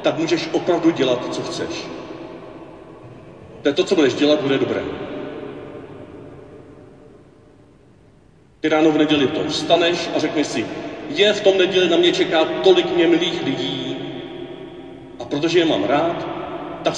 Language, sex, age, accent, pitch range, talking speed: Czech, male, 40-59, native, 145-200 Hz, 140 wpm